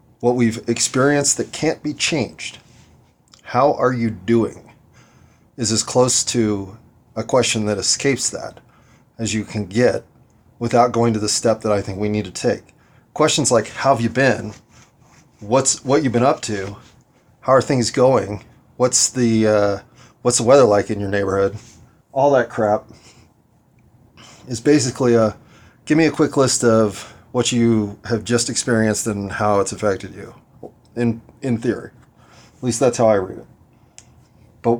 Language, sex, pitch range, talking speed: English, male, 110-130 Hz, 165 wpm